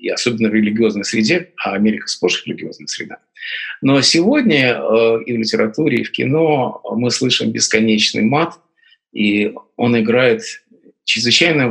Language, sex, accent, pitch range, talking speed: Russian, male, native, 110-140 Hz, 145 wpm